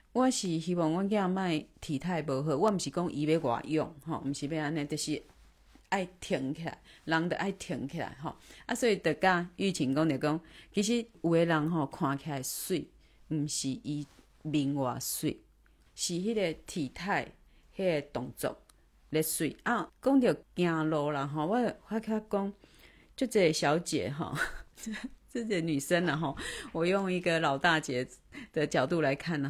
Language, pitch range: Chinese, 145-195 Hz